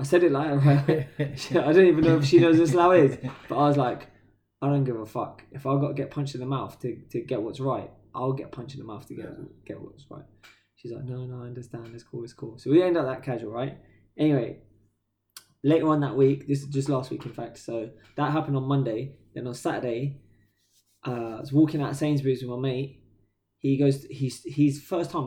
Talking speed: 240 wpm